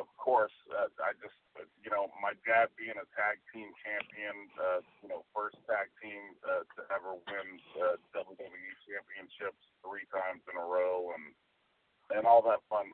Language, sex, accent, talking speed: English, male, American, 175 wpm